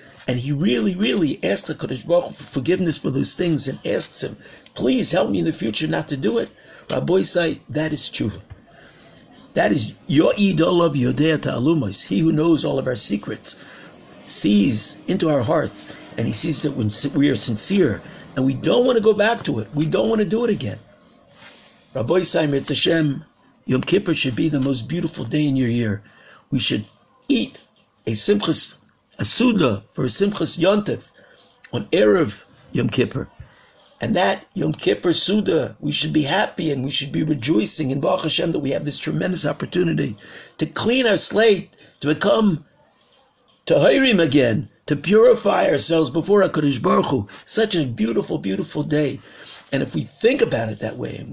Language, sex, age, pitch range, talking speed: English, male, 50-69, 135-180 Hz, 180 wpm